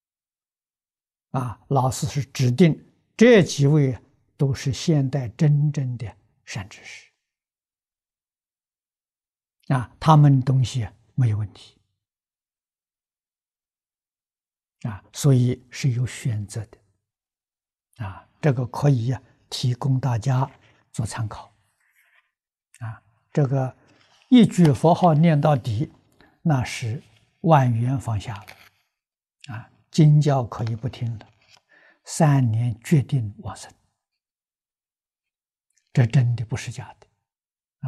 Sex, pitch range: male, 120-145 Hz